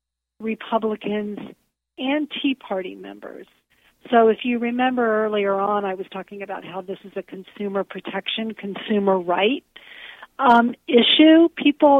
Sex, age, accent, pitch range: female, 50-69, American, 190-240 Hz